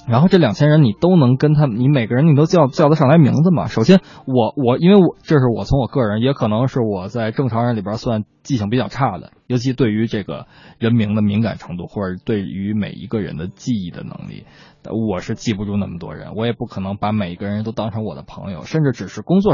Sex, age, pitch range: male, 20-39, 105-145 Hz